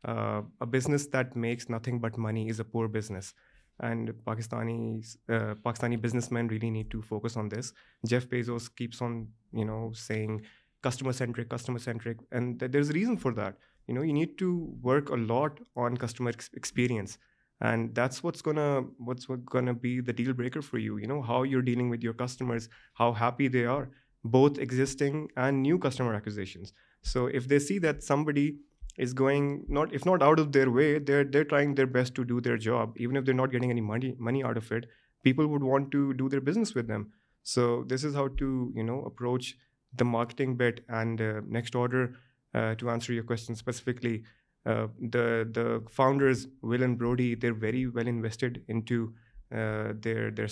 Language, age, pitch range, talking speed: Urdu, 20-39, 115-130 Hz, 195 wpm